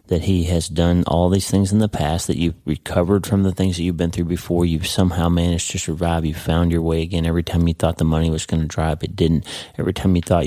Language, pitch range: English, 85-100 Hz